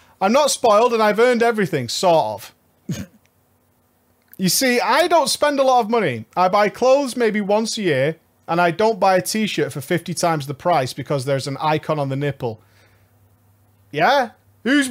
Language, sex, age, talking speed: English, male, 30-49, 180 wpm